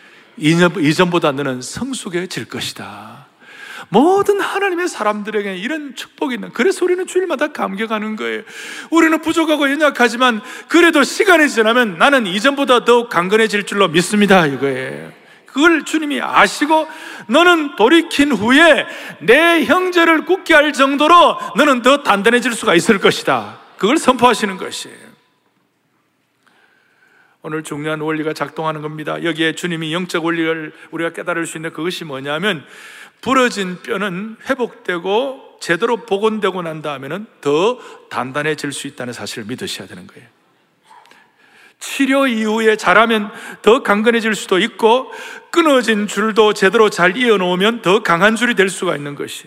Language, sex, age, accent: Korean, male, 40-59, native